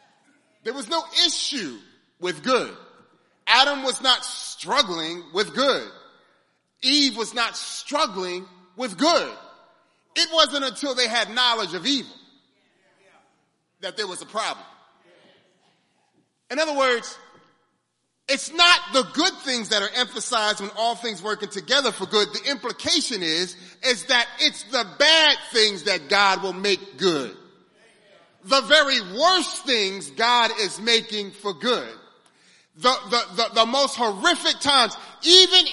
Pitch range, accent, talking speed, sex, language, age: 230-310 Hz, American, 135 wpm, male, English, 30-49